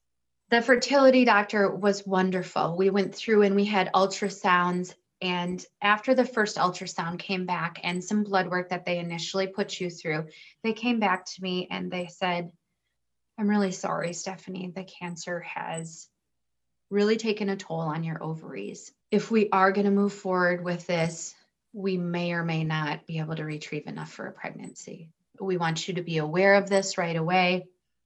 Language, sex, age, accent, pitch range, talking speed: English, female, 20-39, American, 170-205 Hz, 175 wpm